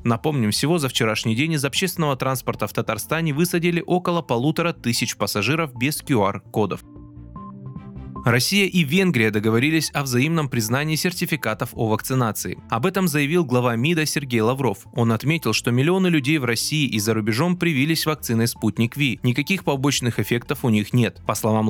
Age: 20-39